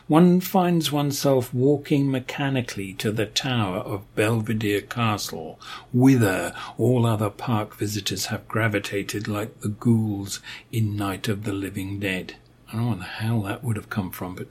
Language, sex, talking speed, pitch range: English, male, 160 wpm, 100-125 Hz